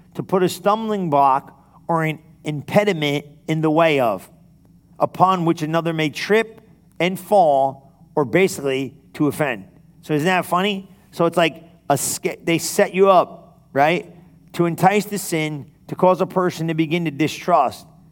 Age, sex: 40-59, male